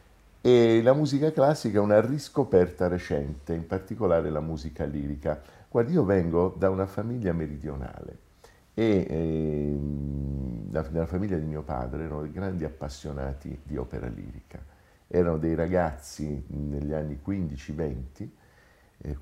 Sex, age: male, 50-69